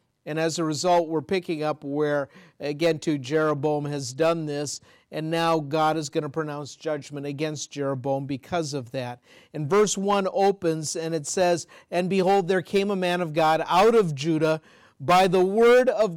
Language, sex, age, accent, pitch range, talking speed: English, male, 50-69, American, 145-185 Hz, 180 wpm